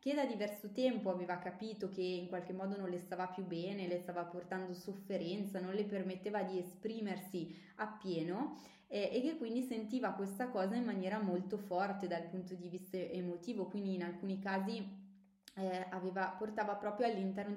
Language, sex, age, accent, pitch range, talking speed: Italian, female, 20-39, native, 185-220 Hz, 170 wpm